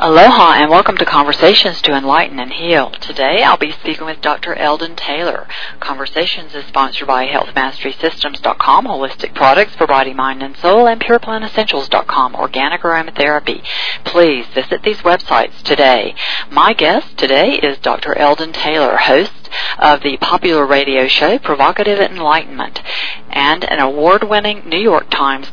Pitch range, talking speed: 140-180 Hz, 140 wpm